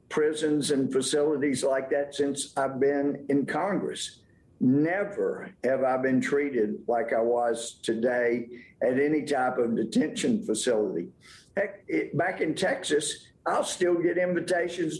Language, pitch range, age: English, 130-155 Hz, 50-69